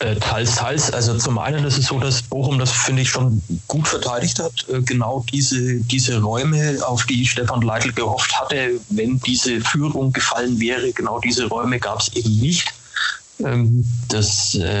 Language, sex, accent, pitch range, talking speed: German, male, German, 110-130 Hz, 165 wpm